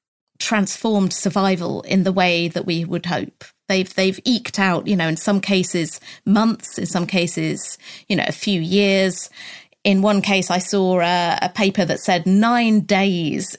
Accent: British